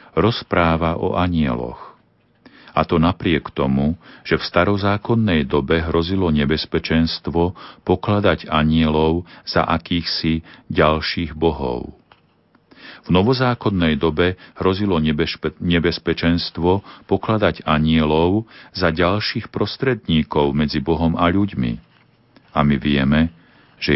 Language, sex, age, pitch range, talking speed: Slovak, male, 40-59, 75-95 Hz, 95 wpm